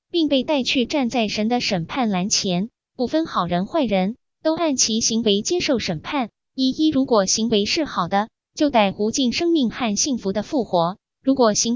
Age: 20-39